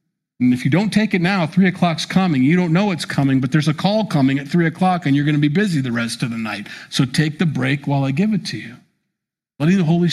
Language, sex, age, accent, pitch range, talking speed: English, male, 50-69, American, 140-180 Hz, 280 wpm